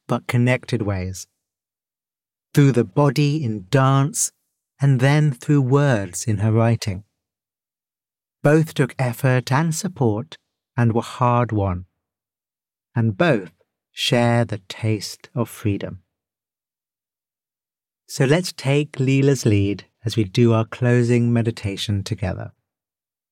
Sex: male